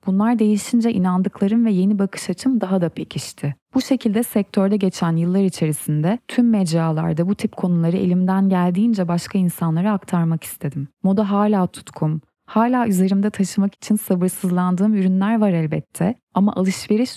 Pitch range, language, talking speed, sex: 170-210 Hz, Turkish, 140 wpm, female